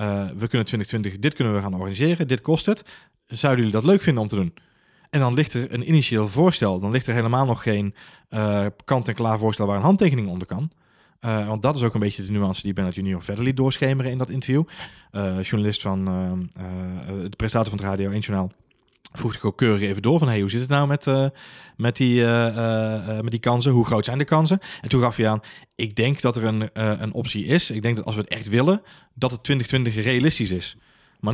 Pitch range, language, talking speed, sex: 105-135 Hz, Dutch, 225 wpm, male